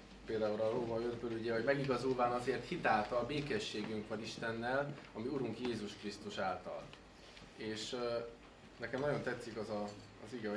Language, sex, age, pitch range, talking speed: English, male, 20-39, 105-120 Hz, 160 wpm